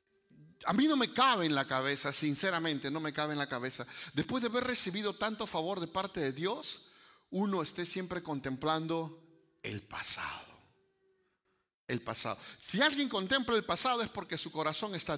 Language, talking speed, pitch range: Spanish, 170 wpm, 160-235 Hz